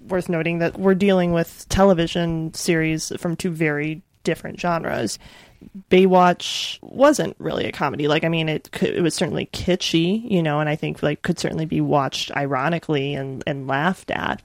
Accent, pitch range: American, 155-180 Hz